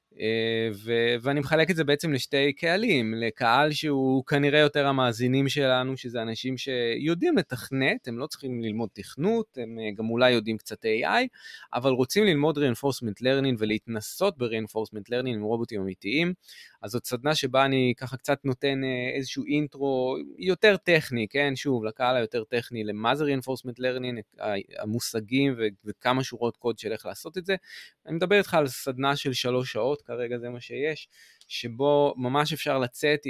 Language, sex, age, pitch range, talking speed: Hebrew, male, 20-39, 115-150 Hz, 155 wpm